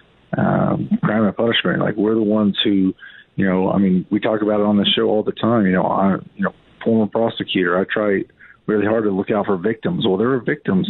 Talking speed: 235 wpm